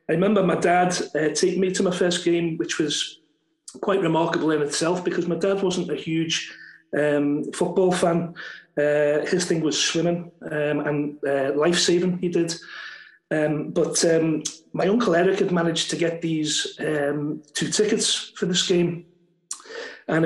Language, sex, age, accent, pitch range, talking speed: English, male, 30-49, British, 155-185 Hz, 165 wpm